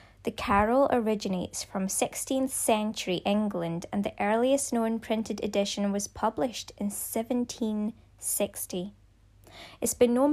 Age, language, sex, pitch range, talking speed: 10-29, English, female, 185-230 Hz, 115 wpm